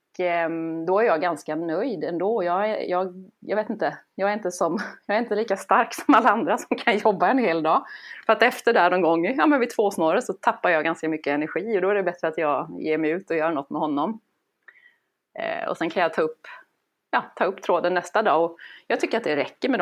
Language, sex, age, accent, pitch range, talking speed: English, female, 30-49, Swedish, 160-210 Hz, 240 wpm